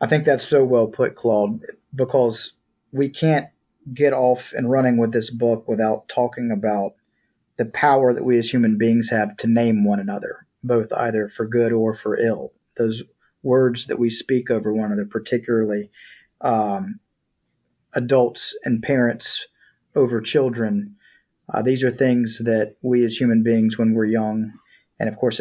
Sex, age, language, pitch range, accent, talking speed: male, 40-59, English, 110-125 Hz, American, 165 wpm